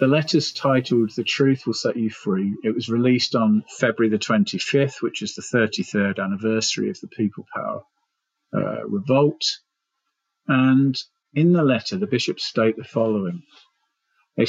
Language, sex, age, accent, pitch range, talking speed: English, male, 40-59, British, 110-140 Hz, 155 wpm